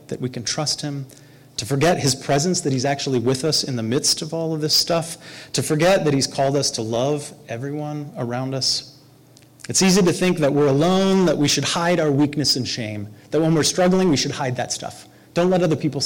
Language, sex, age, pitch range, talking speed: English, male, 30-49, 125-150 Hz, 230 wpm